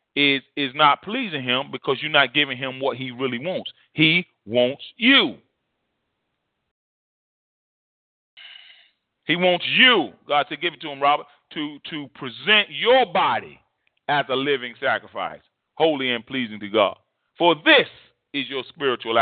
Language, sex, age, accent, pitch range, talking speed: English, male, 30-49, American, 125-165 Hz, 145 wpm